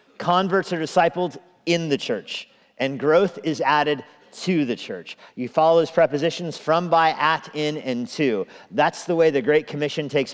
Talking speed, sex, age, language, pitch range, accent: 175 wpm, male, 40-59, English, 125-160 Hz, American